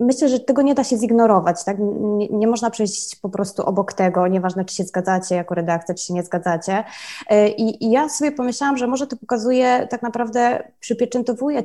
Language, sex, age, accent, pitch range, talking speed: Polish, female, 20-39, native, 200-240 Hz, 190 wpm